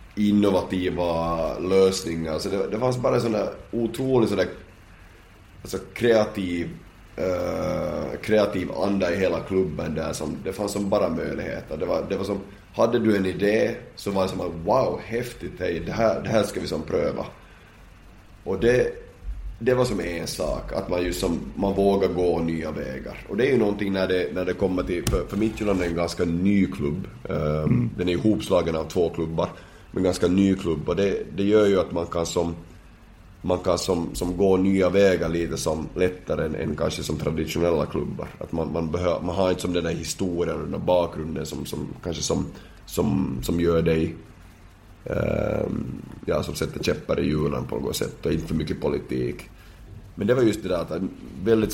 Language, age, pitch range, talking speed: Swedish, 30-49, 85-100 Hz, 195 wpm